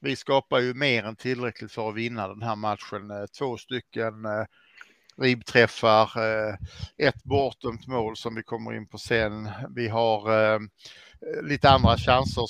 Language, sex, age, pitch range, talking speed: Swedish, male, 60-79, 110-125 Hz, 150 wpm